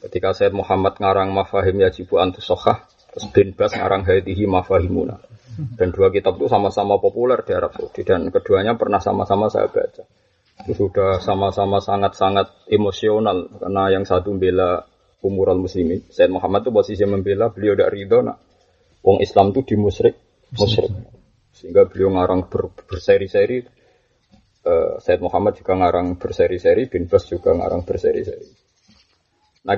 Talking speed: 135 wpm